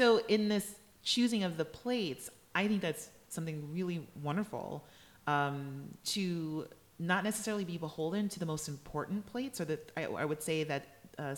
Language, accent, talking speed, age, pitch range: English, American, 170 wpm, 30-49, 135-170 Hz